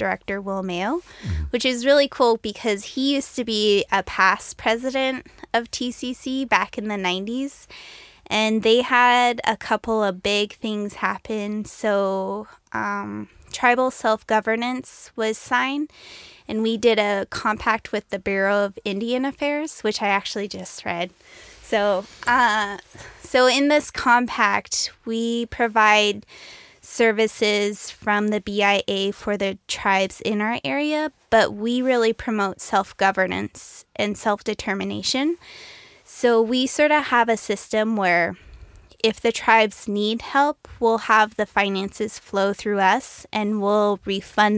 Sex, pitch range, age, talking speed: female, 200-240 Hz, 10-29, 135 wpm